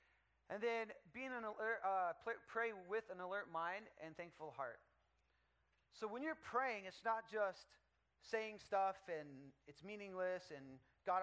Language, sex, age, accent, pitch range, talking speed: English, male, 30-49, American, 155-210 Hz, 150 wpm